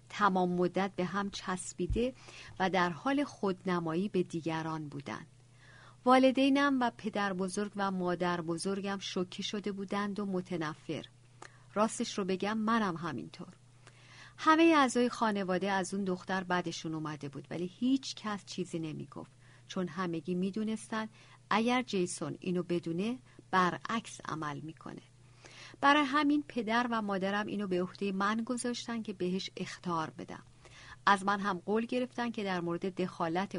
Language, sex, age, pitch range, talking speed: Persian, female, 50-69, 165-210 Hz, 135 wpm